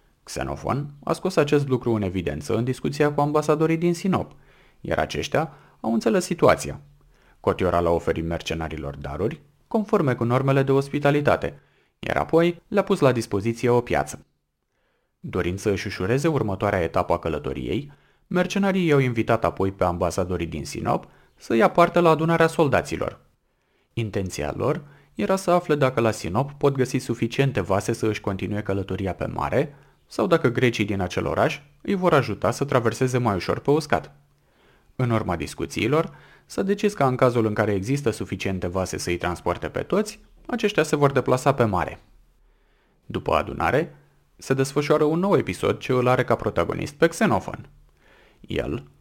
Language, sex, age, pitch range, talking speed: Romanian, male, 30-49, 95-150 Hz, 160 wpm